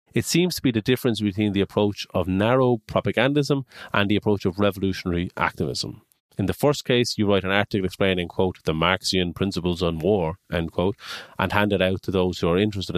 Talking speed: 205 wpm